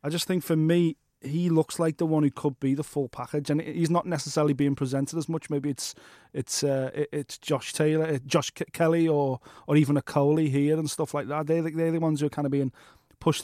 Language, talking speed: English, 245 wpm